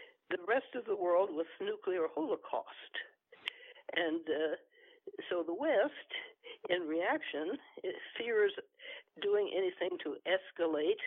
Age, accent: 60-79, American